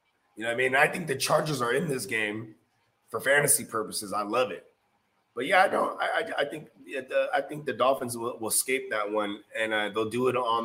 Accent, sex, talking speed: American, male, 250 wpm